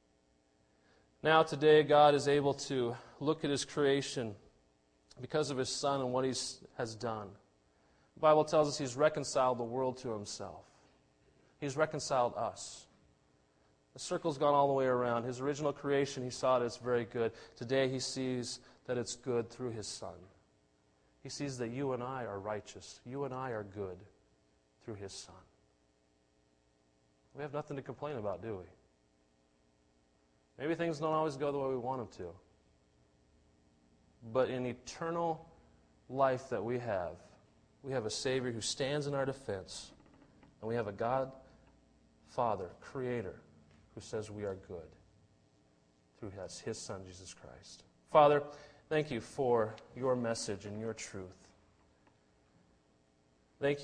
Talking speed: 150 wpm